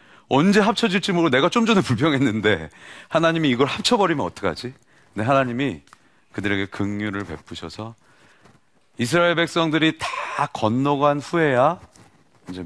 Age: 40-59